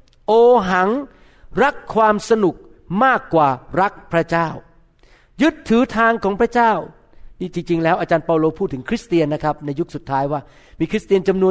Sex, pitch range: male, 165-220 Hz